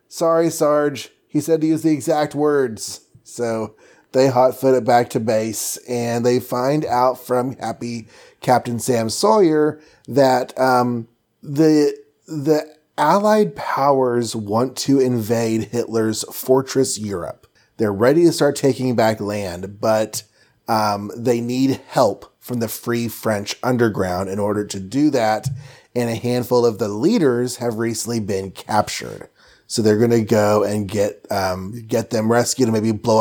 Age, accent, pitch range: 30-49, American, 110-135 Hz